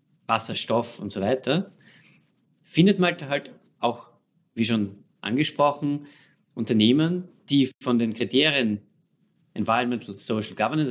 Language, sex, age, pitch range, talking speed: German, male, 30-49, 130-180 Hz, 105 wpm